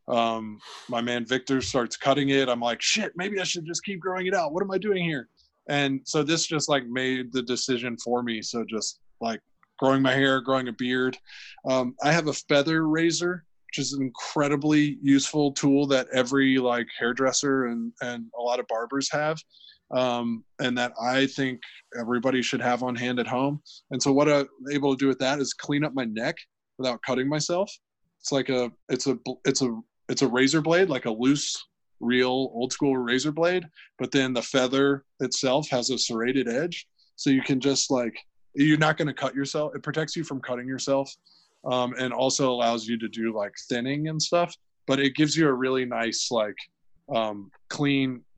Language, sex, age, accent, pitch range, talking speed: English, male, 20-39, American, 120-145 Hz, 200 wpm